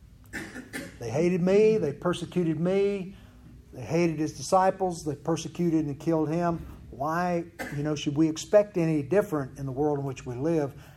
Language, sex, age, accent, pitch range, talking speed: English, male, 50-69, American, 120-175 Hz, 165 wpm